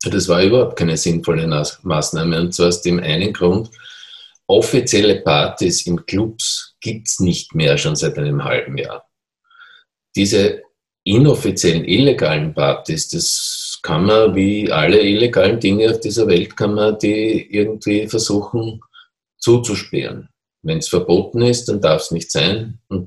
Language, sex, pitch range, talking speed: German, male, 90-110 Hz, 145 wpm